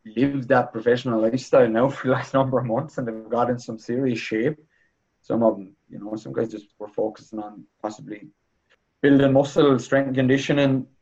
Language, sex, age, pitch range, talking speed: English, male, 20-39, 110-135 Hz, 190 wpm